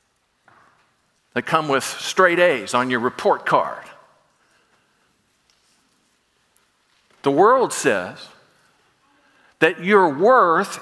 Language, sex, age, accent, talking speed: English, male, 50-69, American, 85 wpm